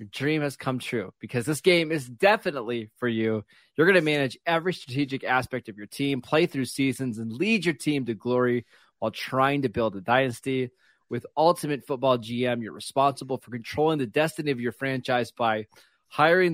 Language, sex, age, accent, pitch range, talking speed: English, male, 20-39, American, 120-145 Hz, 190 wpm